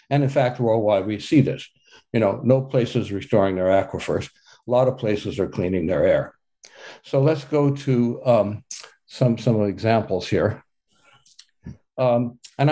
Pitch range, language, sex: 110-140 Hz, English, male